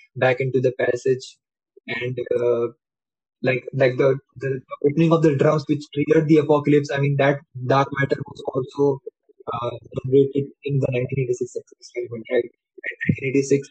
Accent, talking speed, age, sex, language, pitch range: Indian, 150 wpm, 20-39, male, English, 125-140 Hz